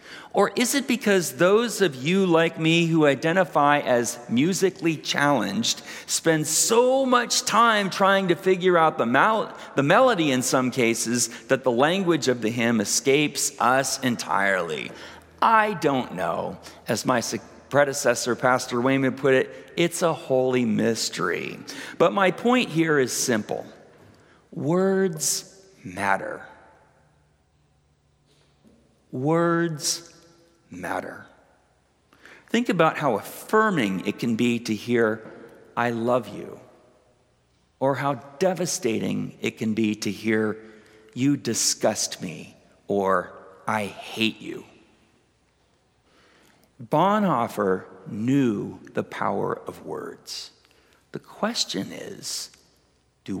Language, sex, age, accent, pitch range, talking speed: English, male, 40-59, American, 120-180 Hz, 110 wpm